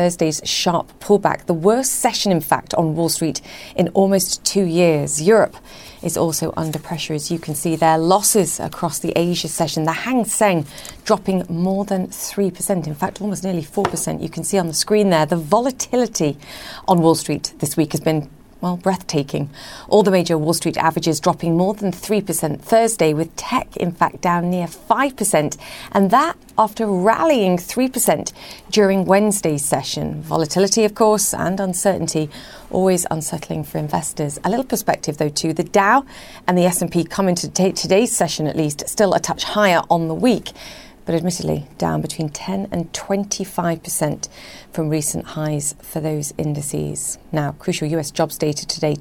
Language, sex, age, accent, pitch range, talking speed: English, female, 40-59, British, 160-195 Hz, 170 wpm